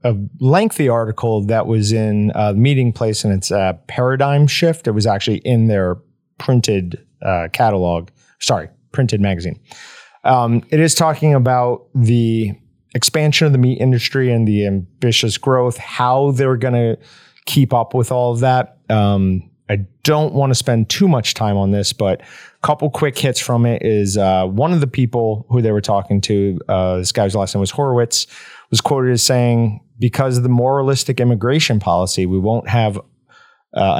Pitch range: 105-130 Hz